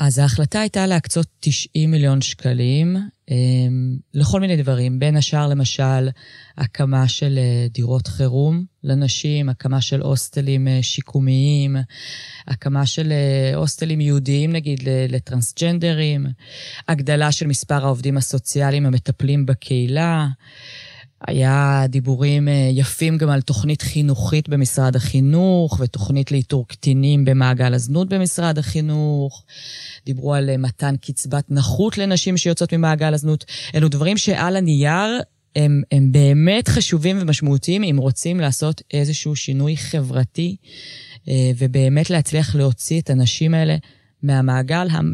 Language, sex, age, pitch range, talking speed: Hebrew, female, 20-39, 130-155 Hz, 110 wpm